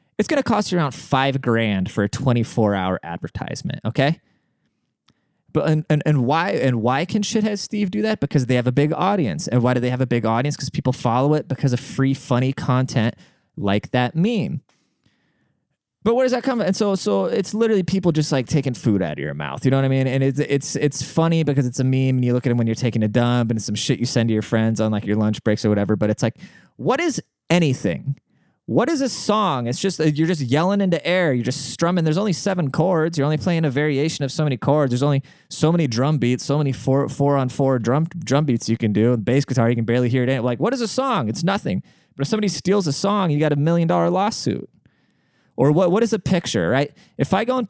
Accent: American